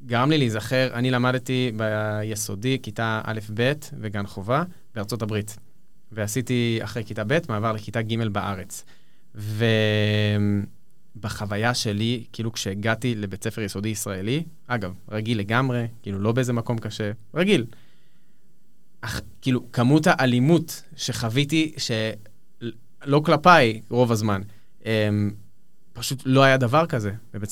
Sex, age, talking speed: male, 20-39, 115 wpm